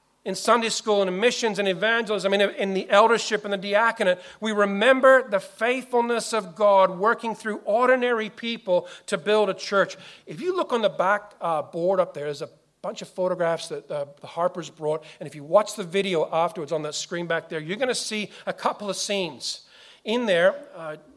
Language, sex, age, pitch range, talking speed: English, male, 40-59, 170-225 Hz, 205 wpm